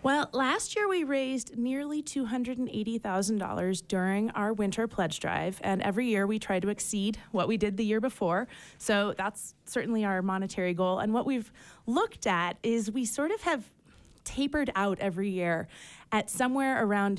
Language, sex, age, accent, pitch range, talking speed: English, female, 30-49, American, 185-225 Hz, 170 wpm